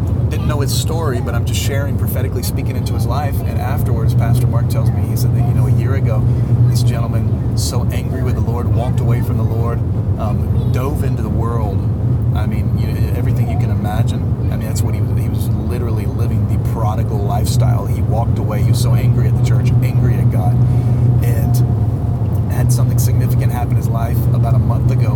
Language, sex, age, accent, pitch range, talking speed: English, male, 30-49, American, 110-120 Hz, 205 wpm